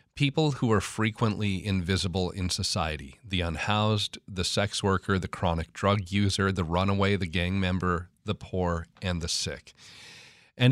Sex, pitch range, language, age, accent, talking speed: male, 85-110 Hz, English, 40-59, American, 150 wpm